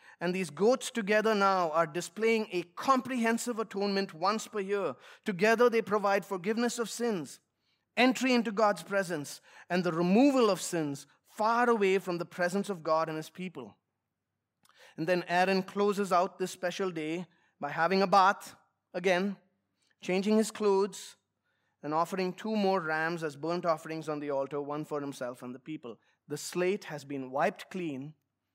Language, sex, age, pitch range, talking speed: English, male, 20-39, 165-210 Hz, 160 wpm